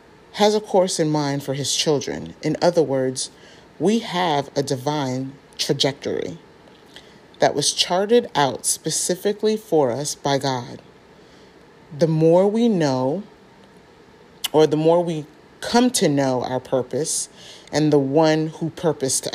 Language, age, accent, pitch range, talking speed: English, 30-49, American, 140-175 Hz, 135 wpm